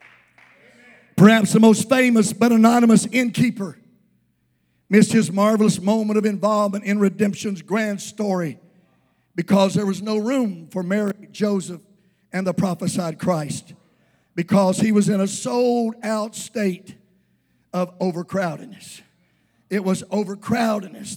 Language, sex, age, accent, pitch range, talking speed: English, male, 50-69, American, 195-245 Hz, 115 wpm